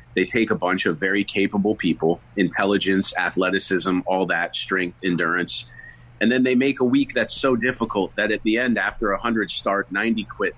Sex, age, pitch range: male, 30-49, 95-120 Hz